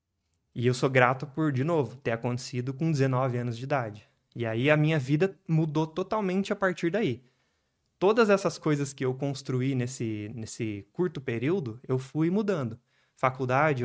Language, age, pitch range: Portuguese, 20-39, 125-160 Hz